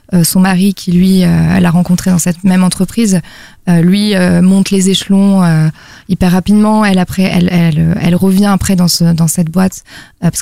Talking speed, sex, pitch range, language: 205 wpm, female, 180-210 Hz, French